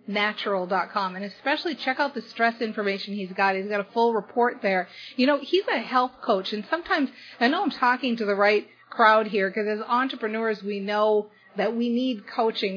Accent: American